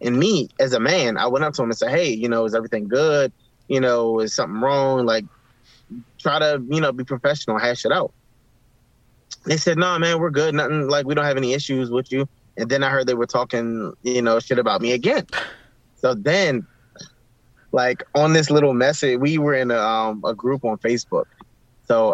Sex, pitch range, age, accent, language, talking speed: male, 115-140 Hz, 20-39, American, English, 210 wpm